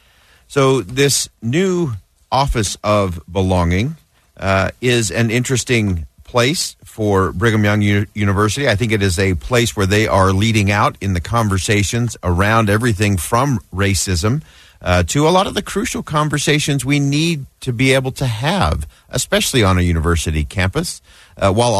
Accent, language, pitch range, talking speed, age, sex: American, English, 90-120 Hz, 155 wpm, 40-59, male